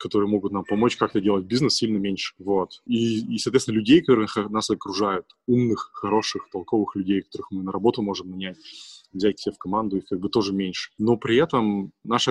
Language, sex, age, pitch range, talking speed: Russian, male, 20-39, 95-110 Hz, 195 wpm